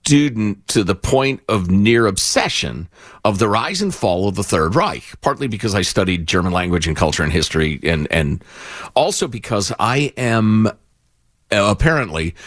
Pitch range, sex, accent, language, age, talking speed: 100-160 Hz, male, American, English, 50-69, 160 wpm